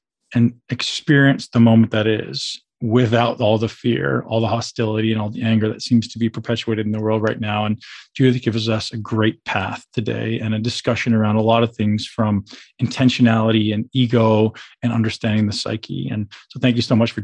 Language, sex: English, male